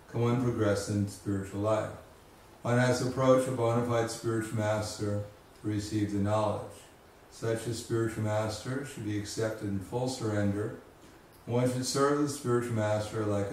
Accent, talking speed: American, 165 wpm